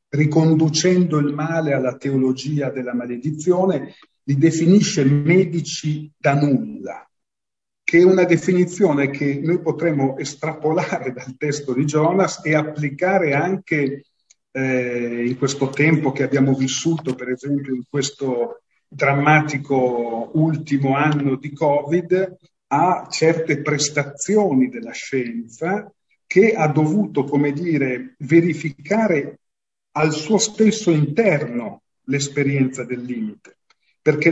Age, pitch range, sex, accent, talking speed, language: 40-59, 140-170 Hz, male, native, 110 wpm, Italian